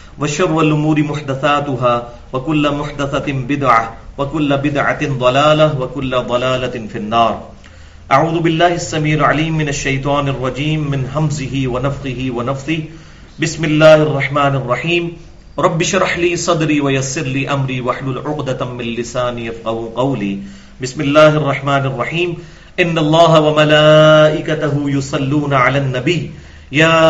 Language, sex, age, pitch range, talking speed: English, male, 40-59, 120-150 Hz, 115 wpm